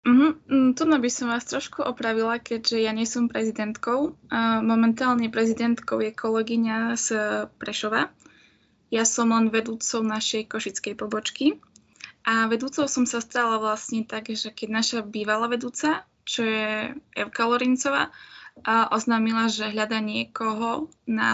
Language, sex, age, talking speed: Slovak, female, 10-29, 125 wpm